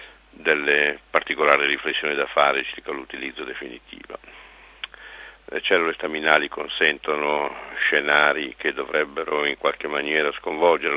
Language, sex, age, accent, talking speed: Italian, male, 50-69, native, 105 wpm